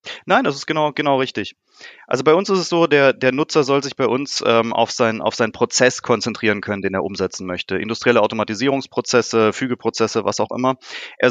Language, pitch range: English, 110-135 Hz